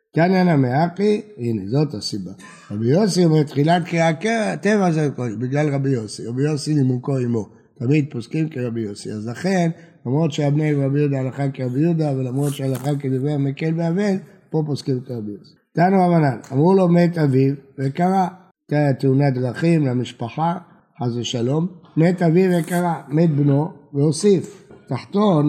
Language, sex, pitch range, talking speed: Hebrew, male, 130-175 Hz, 150 wpm